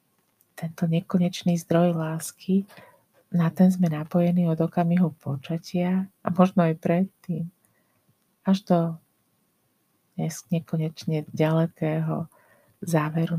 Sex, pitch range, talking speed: female, 160-180 Hz, 90 wpm